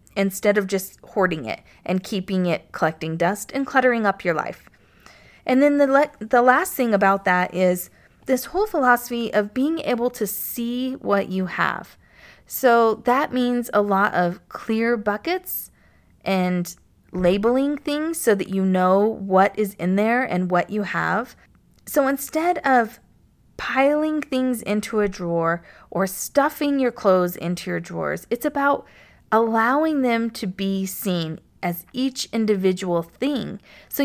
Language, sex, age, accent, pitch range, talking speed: English, female, 30-49, American, 190-260 Hz, 150 wpm